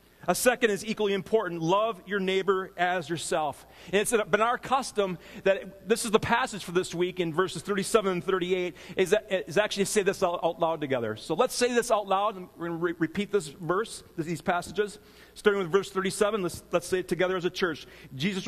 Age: 40-59